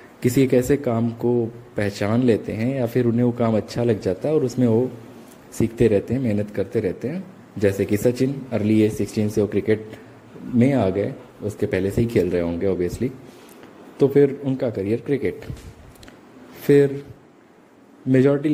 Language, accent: Hindi, native